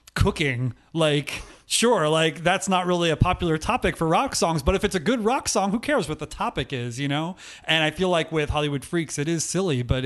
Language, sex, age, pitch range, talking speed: English, male, 30-49, 140-180 Hz, 235 wpm